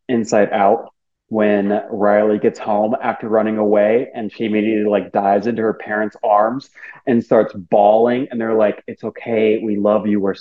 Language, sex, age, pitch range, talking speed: English, male, 30-49, 105-120 Hz, 175 wpm